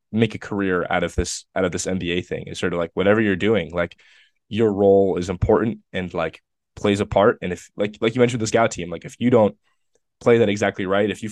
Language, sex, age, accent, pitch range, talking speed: English, male, 20-39, American, 90-105 Hz, 250 wpm